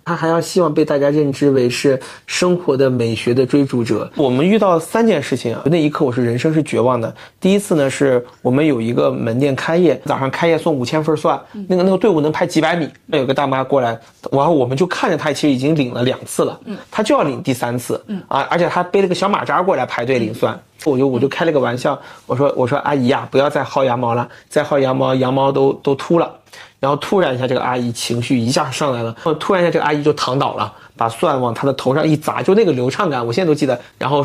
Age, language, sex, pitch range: 30-49, Chinese, male, 130-165 Hz